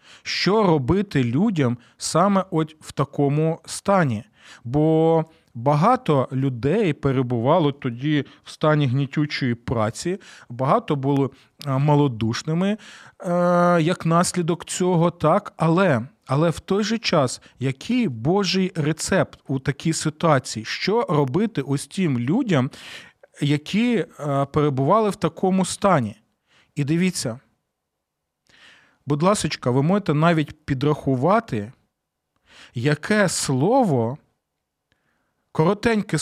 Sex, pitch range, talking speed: male, 135-180 Hz, 95 wpm